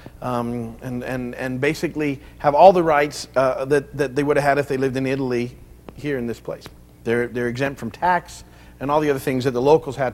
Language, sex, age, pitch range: English, male, 50-69, 115-150 Hz